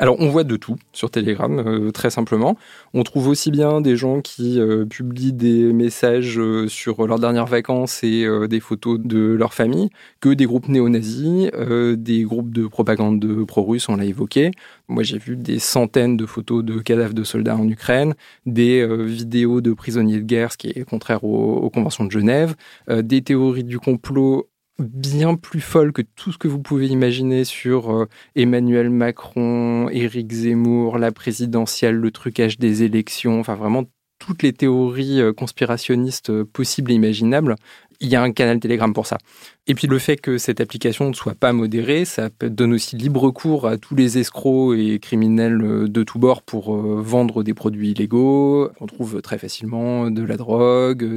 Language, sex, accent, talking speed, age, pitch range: French, male, French, 185 wpm, 20-39, 110-125 Hz